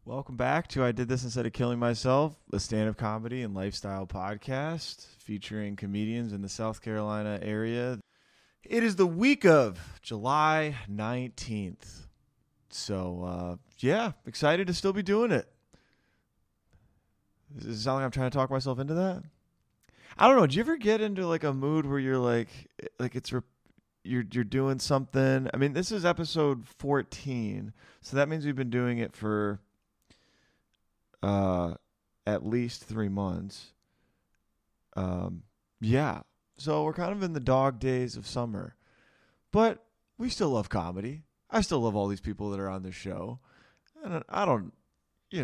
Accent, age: American, 20-39